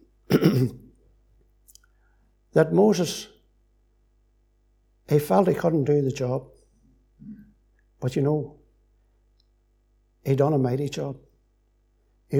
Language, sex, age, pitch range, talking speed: English, male, 60-79, 120-150 Hz, 85 wpm